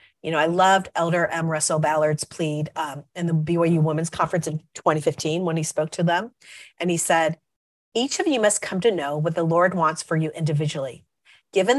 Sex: female